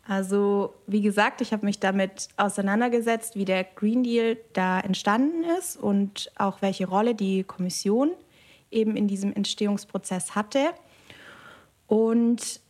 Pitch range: 200-245 Hz